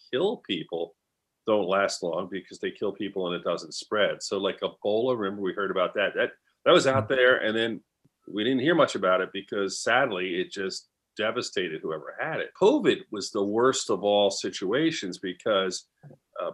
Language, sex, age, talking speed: English, male, 40-59, 185 wpm